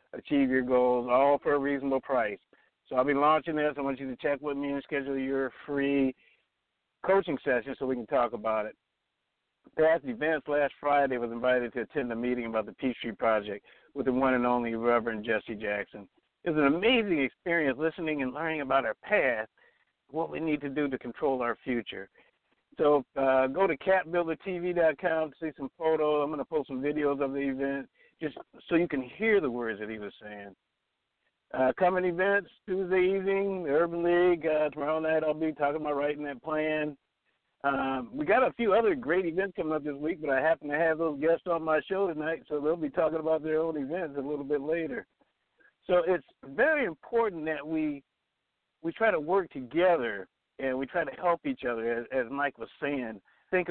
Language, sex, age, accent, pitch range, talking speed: English, male, 60-79, American, 130-165 Hz, 200 wpm